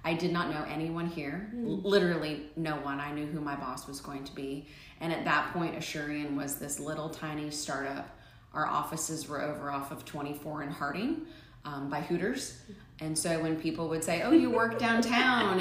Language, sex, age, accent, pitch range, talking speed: English, female, 30-49, American, 145-165 Hz, 190 wpm